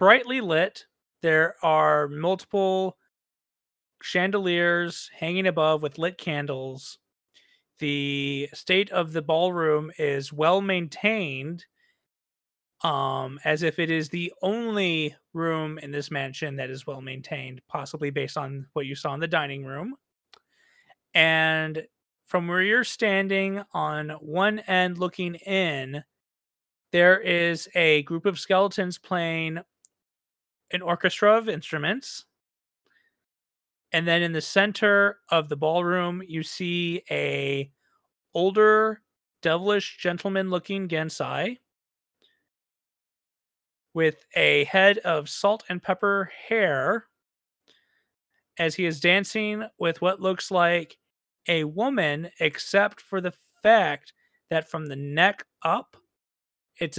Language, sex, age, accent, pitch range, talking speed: English, male, 30-49, American, 150-190 Hz, 115 wpm